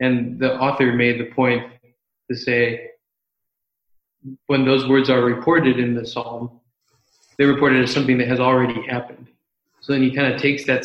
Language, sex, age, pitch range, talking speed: English, male, 20-39, 120-130 Hz, 170 wpm